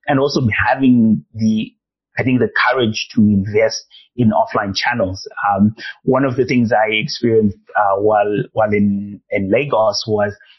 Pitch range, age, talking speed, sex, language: 105-130 Hz, 30-49, 155 wpm, male, English